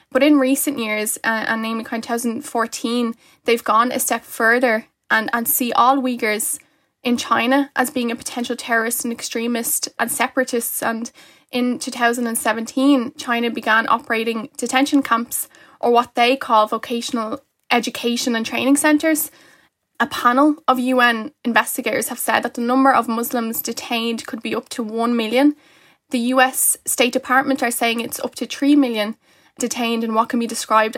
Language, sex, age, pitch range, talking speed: English, female, 10-29, 230-270 Hz, 160 wpm